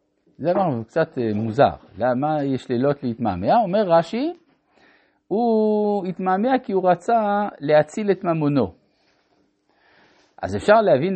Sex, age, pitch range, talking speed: male, 50-69, 130-195 Hz, 110 wpm